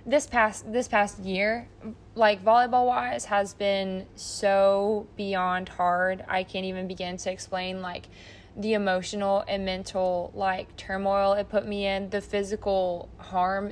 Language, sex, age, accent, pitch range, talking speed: English, female, 20-39, American, 185-210 Hz, 145 wpm